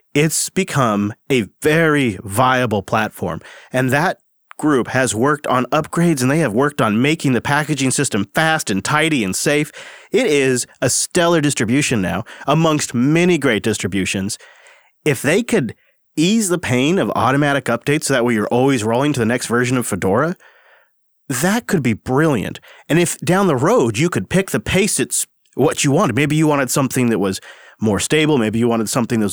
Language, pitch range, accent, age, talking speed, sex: English, 120-155 Hz, American, 30-49, 180 wpm, male